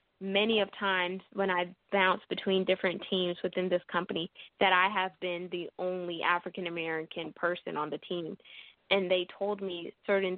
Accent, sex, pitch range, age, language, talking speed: American, female, 180-195 Hz, 10-29, English, 170 wpm